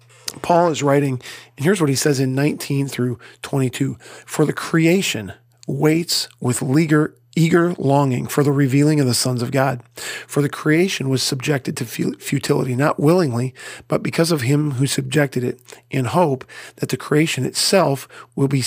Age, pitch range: 40-59, 130-160 Hz